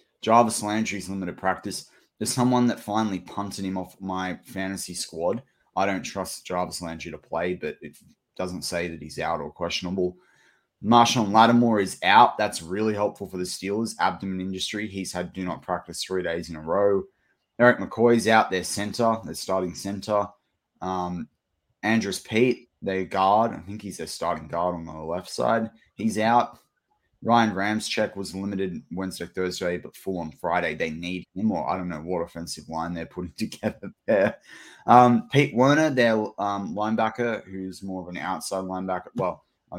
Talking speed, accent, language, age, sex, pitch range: 175 wpm, Australian, English, 20-39, male, 90-110 Hz